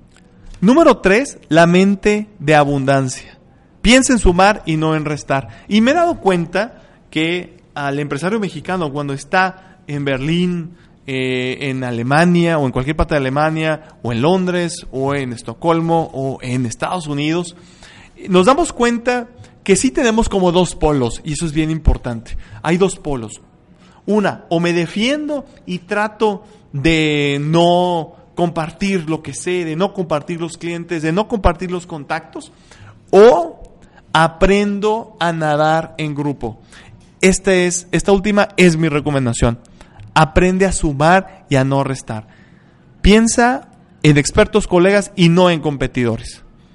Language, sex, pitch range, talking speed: Spanish, male, 145-190 Hz, 140 wpm